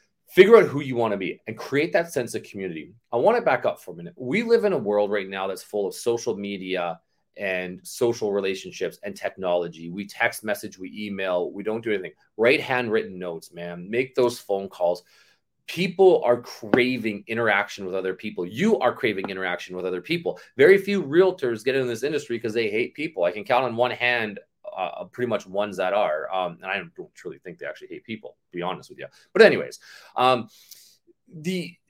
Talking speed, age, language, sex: 210 wpm, 30-49, English, male